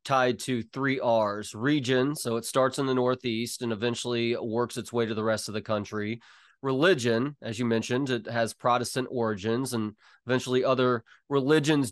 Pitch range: 115-140 Hz